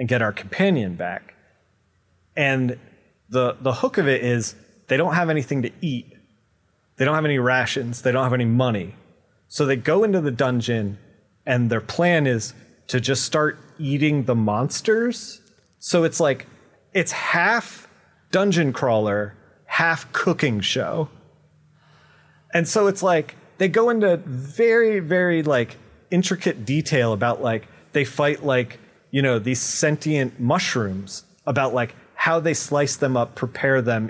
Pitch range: 120-170 Hz